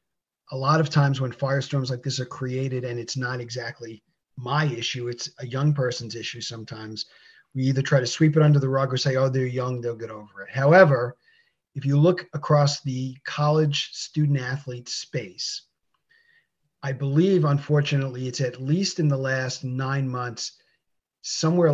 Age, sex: 40-59, male